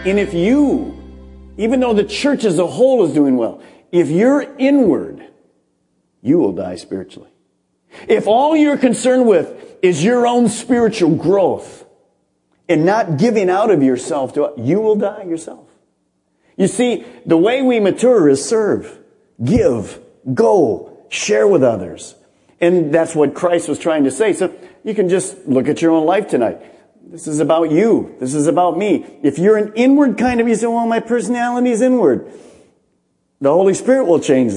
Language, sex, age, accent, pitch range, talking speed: English, male, 50-69, American, 150-235 Hz, 170 wpm